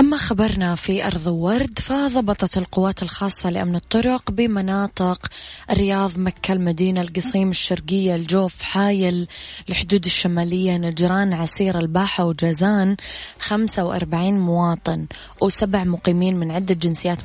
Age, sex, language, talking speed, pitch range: 20-39, female, Arabic, 110 wpm, 175-200 Hz